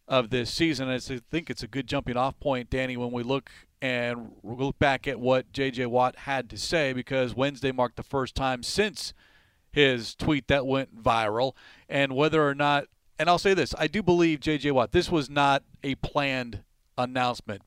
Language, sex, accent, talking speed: English, male, American, 190 wpm